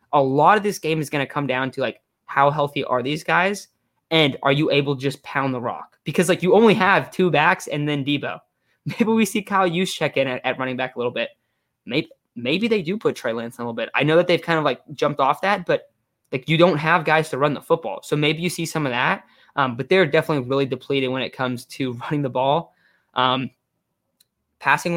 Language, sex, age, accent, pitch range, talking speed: English, male, 20-39, American, 130-160 Hz, 245 wpm